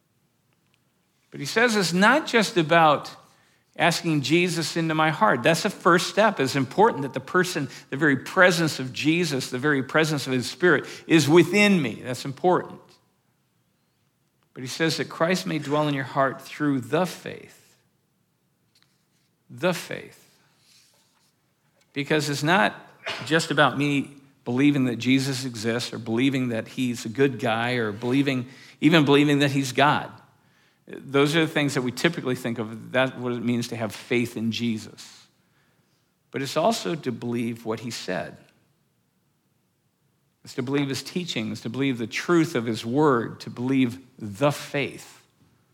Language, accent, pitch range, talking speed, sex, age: English, American, 120-155 Hz, 155 wpm, male, 50-69